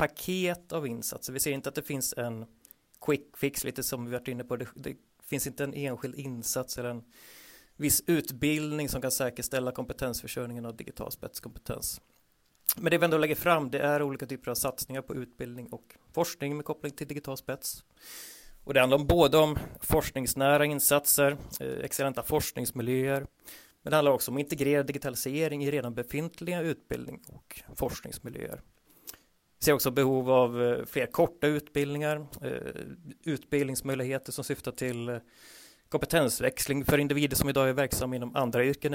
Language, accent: Swedish, native